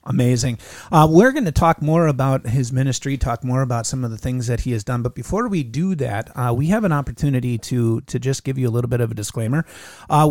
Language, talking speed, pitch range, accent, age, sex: English, 250 wpm, 120-150 Hz, American, 30-49, male